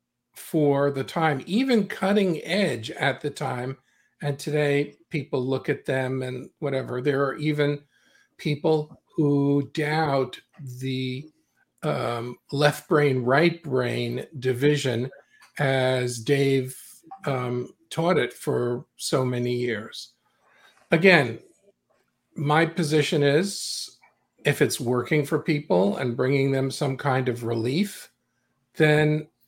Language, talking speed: English, 115 wpm